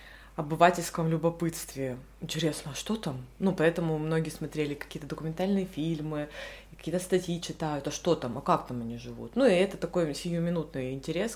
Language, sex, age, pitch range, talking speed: Russian, female, 20-39, 150-170 Hz, 160 wpm